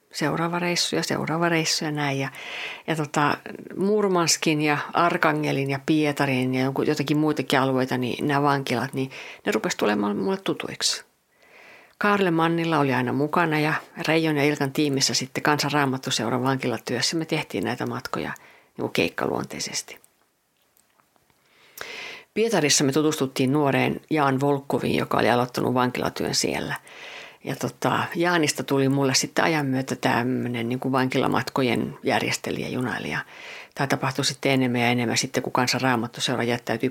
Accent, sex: native, female